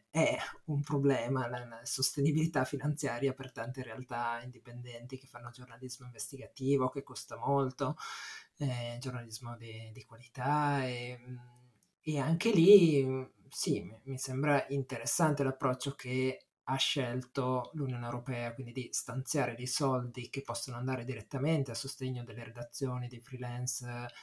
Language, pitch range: Italian, 125-150 Hz